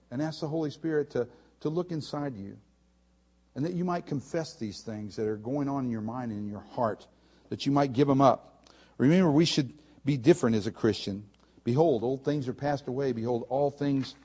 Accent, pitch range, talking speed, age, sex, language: American, 100-150 Hz, 215 wpm, 50-69, male, English